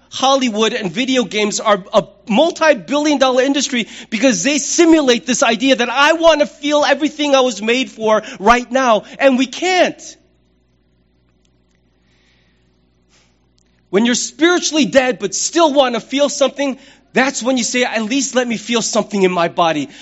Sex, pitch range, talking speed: male, 200-275 Hz, 155 wpm